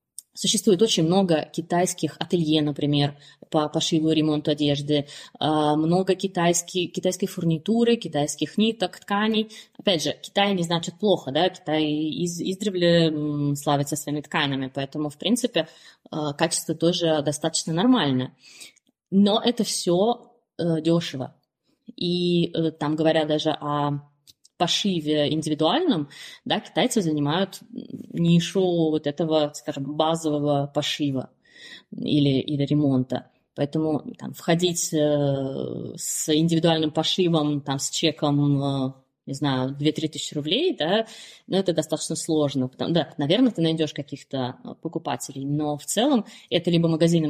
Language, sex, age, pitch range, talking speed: Russian, female, 20-39, 145-175 Hz, 115 wpm